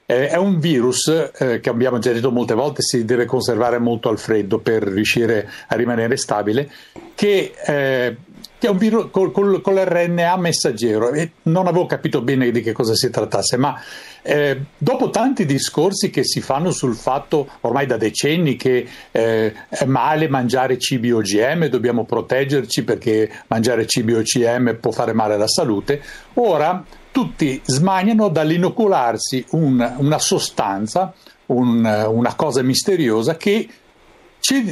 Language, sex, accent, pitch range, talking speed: Italian, male, native, 120-190 Hz, 145 wpm